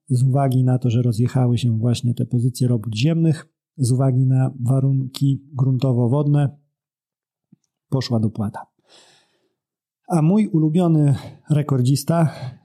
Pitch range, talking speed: 125-145 Hz, 110 wpm